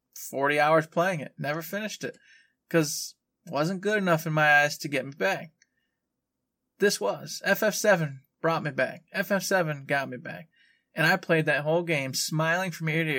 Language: English